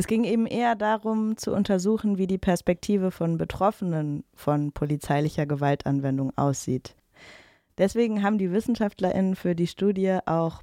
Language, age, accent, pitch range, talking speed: German, 20-39, German, 160-190 Hz, 135 wpm